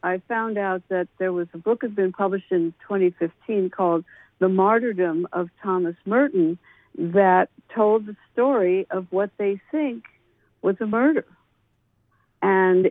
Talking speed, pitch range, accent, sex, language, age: 150 wpm, 170-210 Hz, American, female, English, 60-79